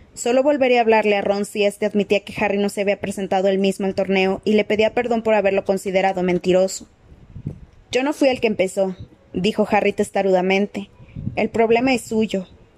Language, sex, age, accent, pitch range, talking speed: Spanish, female, 20-39, Mexican, 195-220 Hz, 190 wpm